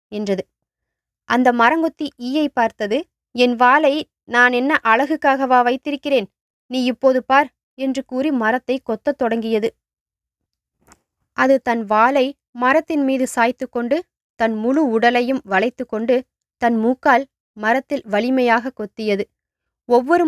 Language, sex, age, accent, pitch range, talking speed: English, female, 20-39, Indian, 225-270 Hz, 105 wpm